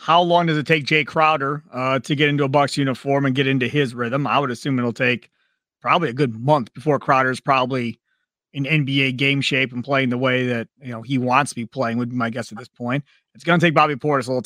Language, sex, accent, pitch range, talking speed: English, male, American, 130-160 Hz, 255 wpm